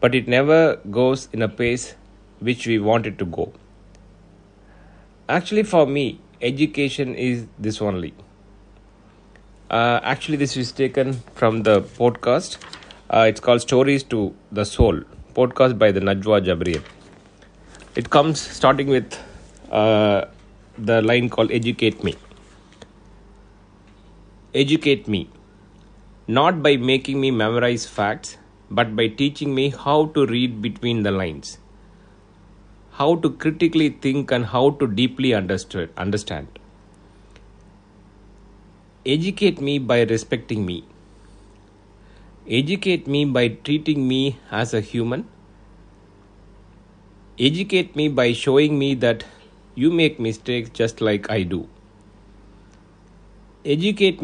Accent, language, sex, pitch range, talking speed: native, Tamil, male, 100-135 Hz, 115 wpm